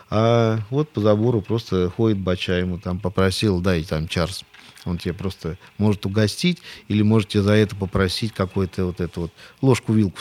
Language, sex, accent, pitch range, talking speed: Russian, male, native, 95-110 Hz, 170 wpm